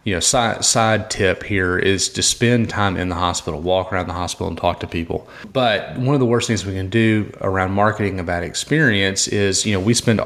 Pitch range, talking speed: 95-110 Hz, 220 wpm